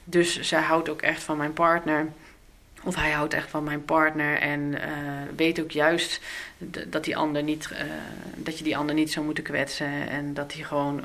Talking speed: 195 wpm